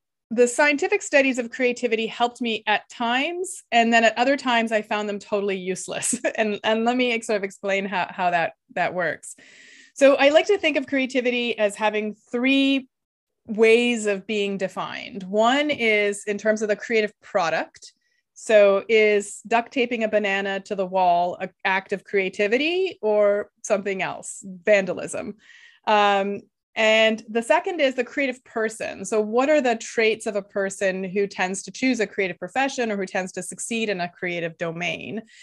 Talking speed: 170 wpm